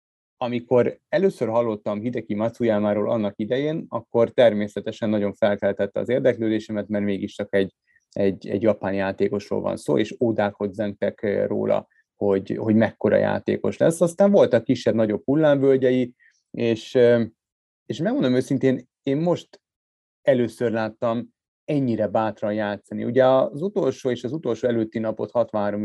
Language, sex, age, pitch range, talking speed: Hungarian, male, 30-49, 105-120 Hz, 130 wpm